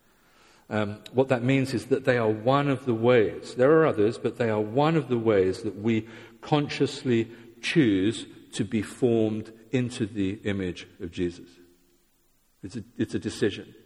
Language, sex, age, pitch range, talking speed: English, male, 50-69, 85-120 Hz, 170 wpm